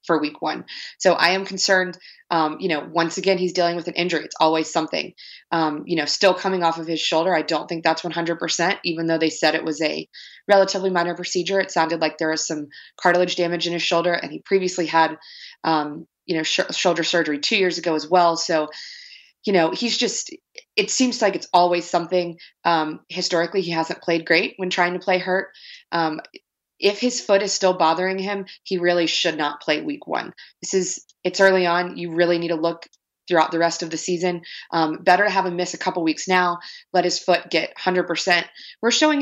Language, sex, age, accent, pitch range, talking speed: English, female, 20-39, American, 165-190 Hz, 215 wpm